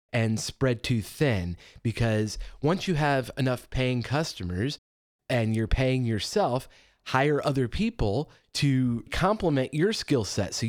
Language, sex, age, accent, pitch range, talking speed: English, male, 30-49, American, 110-145 Hz, 135 wpm